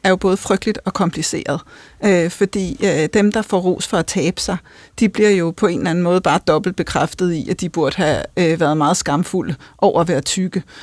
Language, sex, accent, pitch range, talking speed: Danish, female, native, 180-210 Hz, 225 wpm